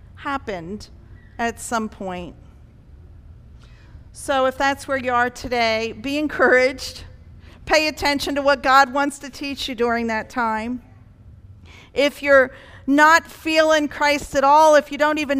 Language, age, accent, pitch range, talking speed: English, 50-69, American, 190-275 Hz, 140 wpm